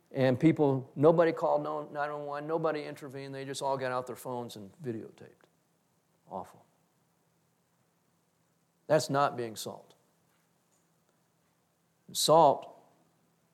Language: English